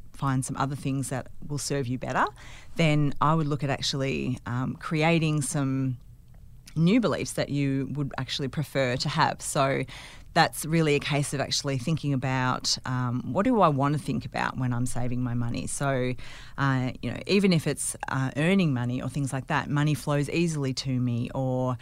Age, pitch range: 30-49, 130-165 Hz